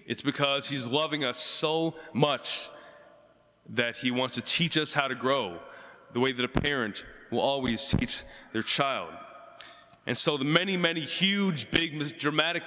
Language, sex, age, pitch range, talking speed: English, male, 20-39, 130-170 Hz, 160 wpm